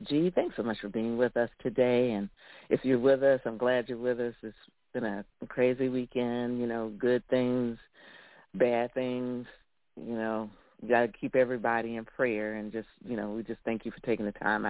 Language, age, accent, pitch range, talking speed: English, 50-69, American, 120-185 Hz, 210 wpm